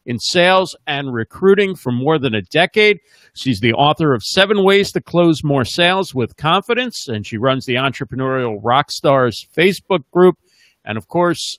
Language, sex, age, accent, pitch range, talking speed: English, male, 50-69, American, 130-175 Hz, 165 wpm